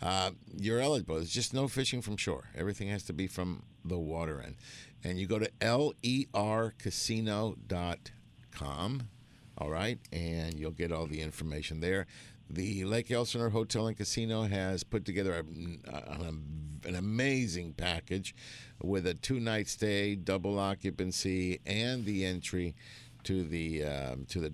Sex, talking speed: male, 135 wpm